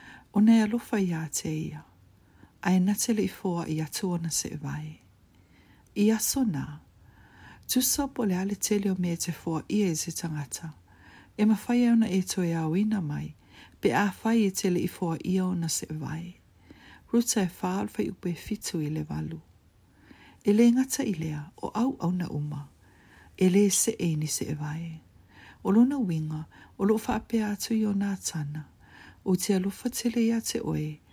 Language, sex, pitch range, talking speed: English, female, 150-210 Hz, 110 wpm